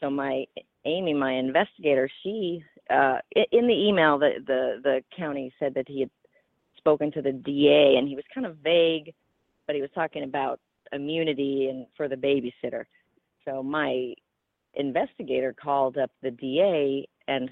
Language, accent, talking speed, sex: English, American, 160 wpm, female